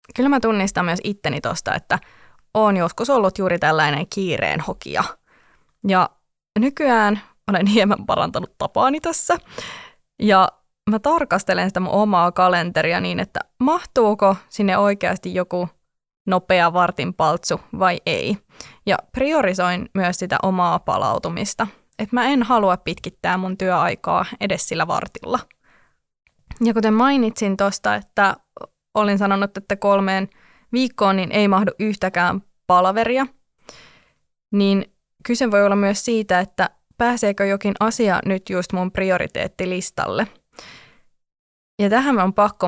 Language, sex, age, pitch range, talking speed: Finnish, female, 20-39, 185-230 Hz, 120 wpm